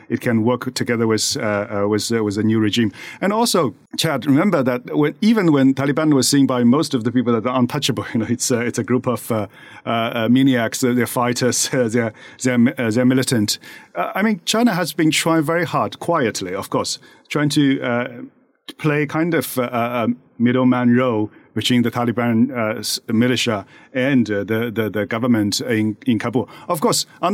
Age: 40-59